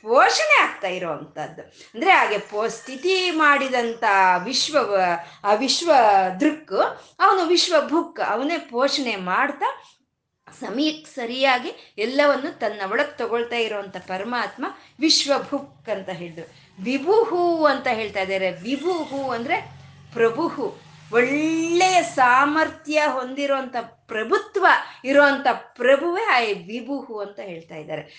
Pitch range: 205-310 Hz